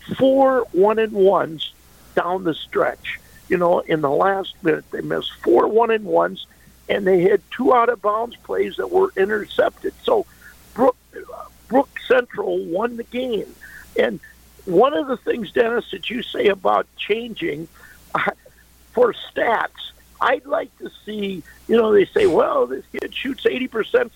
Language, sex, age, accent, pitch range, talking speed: English, male, 50-69, American, 185-275 Hz, 145 wpm